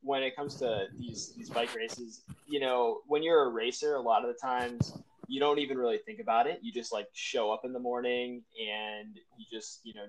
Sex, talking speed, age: male, 230 wpm, 20-39